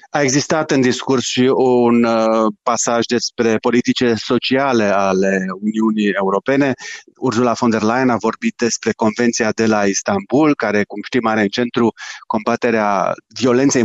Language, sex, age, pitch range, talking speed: Romanian, male, 30-49, 110-130 Hz, 140 wpm